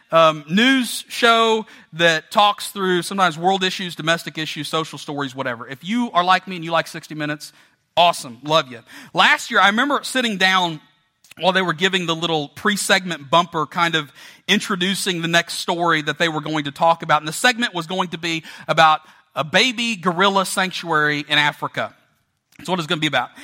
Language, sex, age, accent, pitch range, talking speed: English, male, 40-59, American, 145-195 Hz, 190 wpm